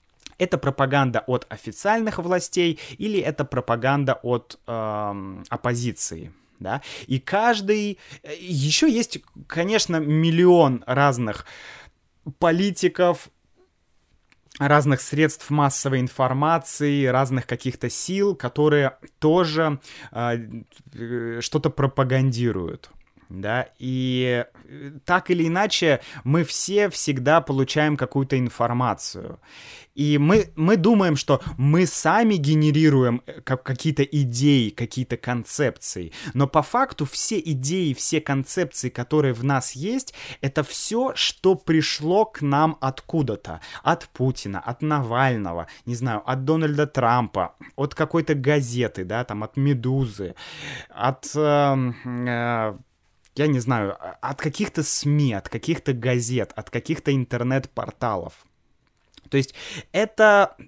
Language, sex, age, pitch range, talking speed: Russian, male, 20-39, 125-160 Hz, 105 wpm